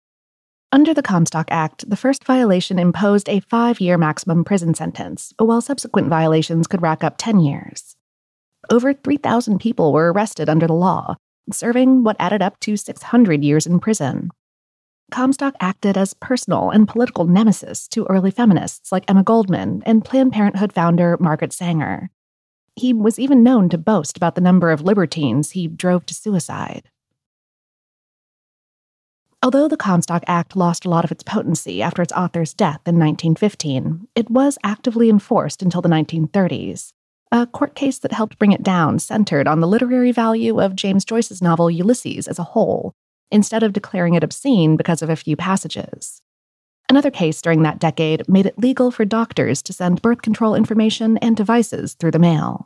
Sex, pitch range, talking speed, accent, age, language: female, 165-225 Hz, 165 wpm, American, 30-49, English